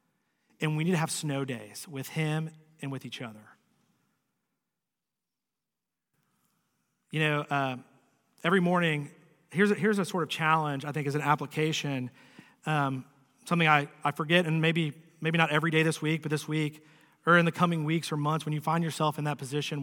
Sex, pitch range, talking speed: male, 140-175 Hz, 180 wpm